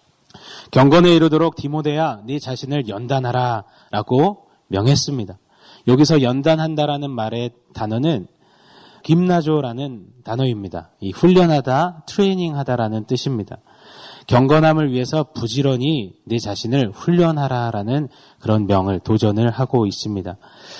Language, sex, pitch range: Korean, male, 115-155 Hz